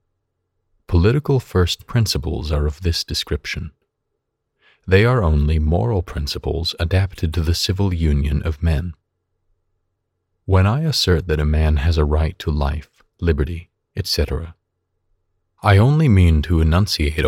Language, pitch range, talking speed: English, 80-95 Hz, 130 wpm